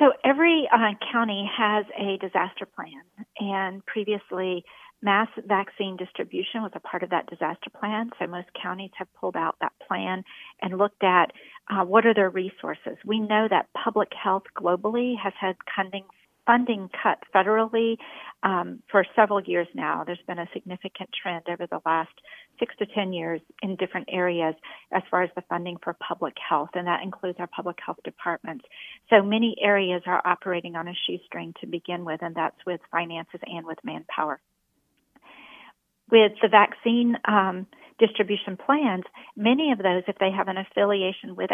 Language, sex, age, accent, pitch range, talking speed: English, female, 50-69, American, 180-210 Hz, 170 wpm